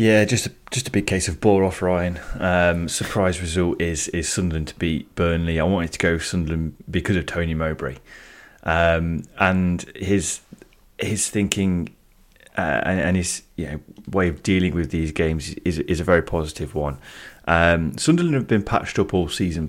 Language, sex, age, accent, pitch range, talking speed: English, male, 20-39, British, 80-95 Hz, 185 wpm